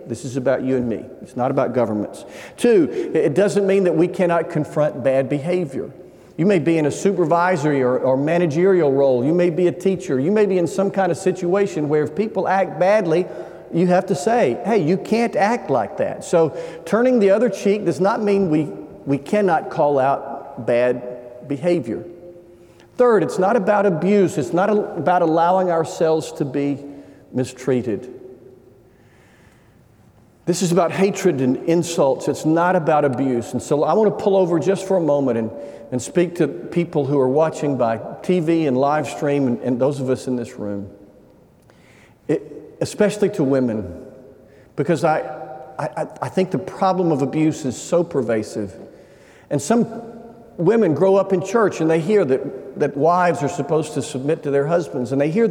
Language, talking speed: English, 180 wpm